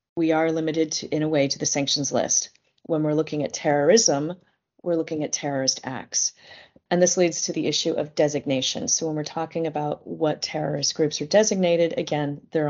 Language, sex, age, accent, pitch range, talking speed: English, female, 30-49, American, 155-180 Hz, 190 wpm